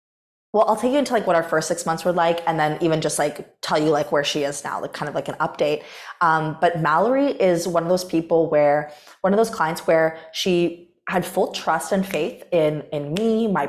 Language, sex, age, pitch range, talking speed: English, female, 20-39, 155-190 Hz, 240 wpm